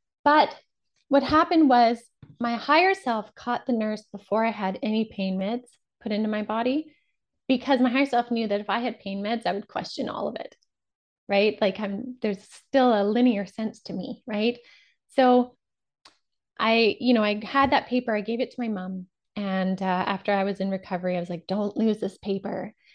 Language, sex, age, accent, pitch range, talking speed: English, female, 20-39, American, 195-250 Hz, 200 wpm